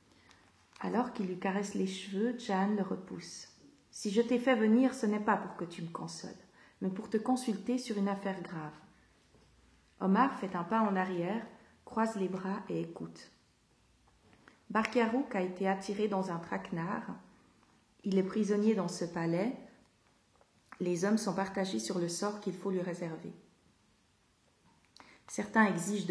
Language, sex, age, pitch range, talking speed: French, female, 40-59, 185-220 Hz, 155 wpm